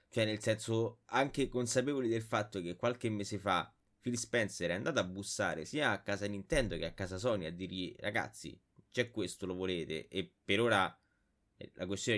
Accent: native